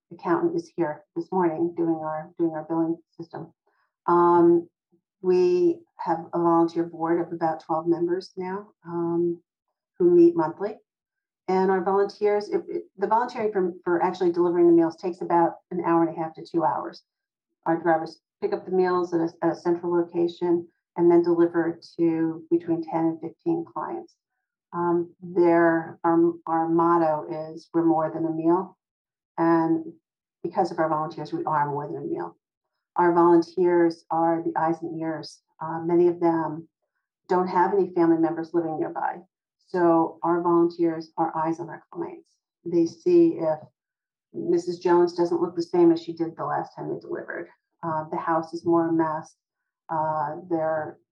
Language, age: English, 50-69